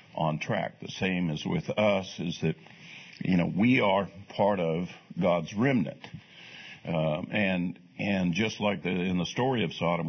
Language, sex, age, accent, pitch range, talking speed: English, male, 50-69, American, 90-125 Hz, 165 wpm